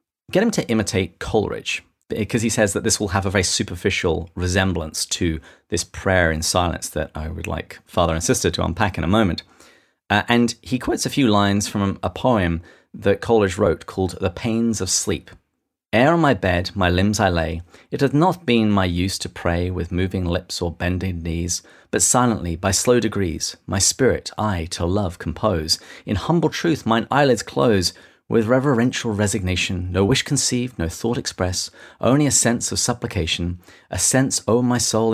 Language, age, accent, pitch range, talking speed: English, 30-49, British, 90-120 Hz, 185 wpm